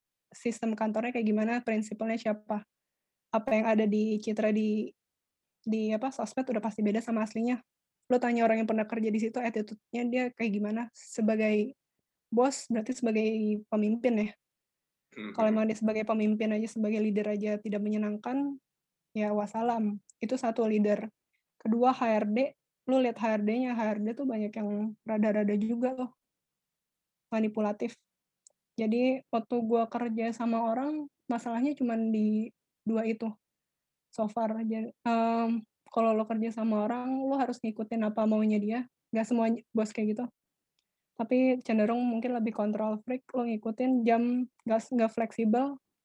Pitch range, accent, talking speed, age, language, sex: 215-240 Hz, native, 140 wpm, 20-39, Indonesian, female